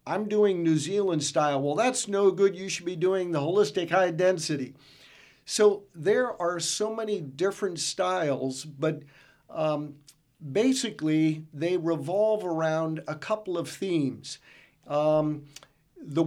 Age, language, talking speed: 50-69, English, 135 wpm